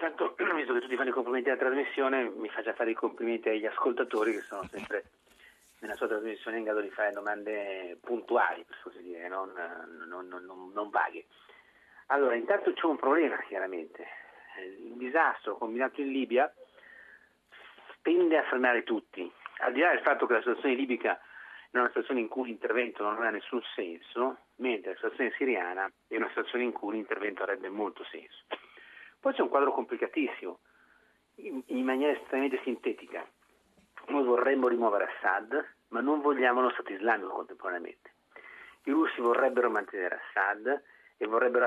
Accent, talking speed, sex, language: native, 155 wpm, male, Italian